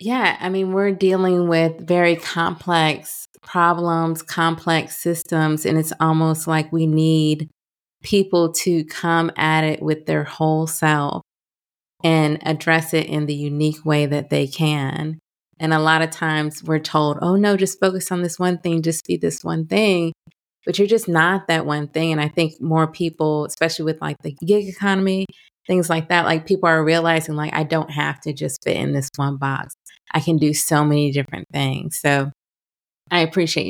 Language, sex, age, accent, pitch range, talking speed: English, female, 20-39, American, 155-175 Hz, 180 wpm